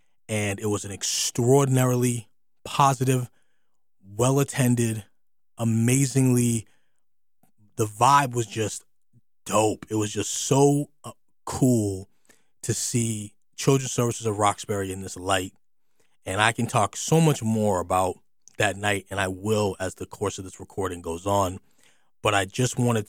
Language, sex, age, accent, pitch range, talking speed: English, male, 20-39, American, 95-120 Hz, 135 wpm